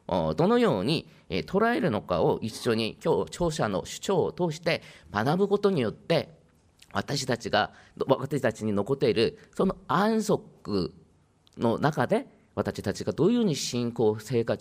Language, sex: Japanese, male